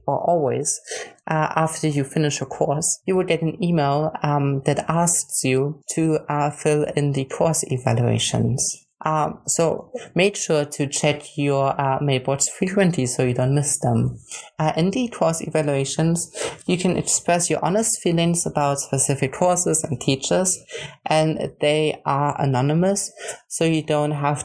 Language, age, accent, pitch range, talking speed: English, 20-39, German, 140-170 Hz, 155 wpm